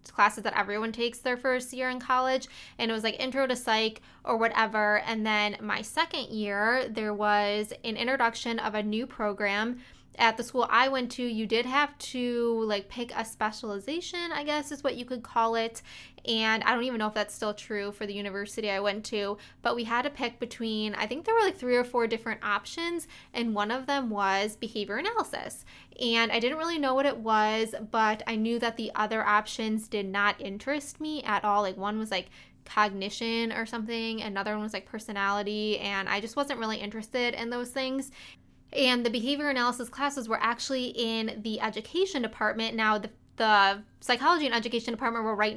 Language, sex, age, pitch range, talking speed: English, female, 20-39, 215-250 Hz, 200 wpm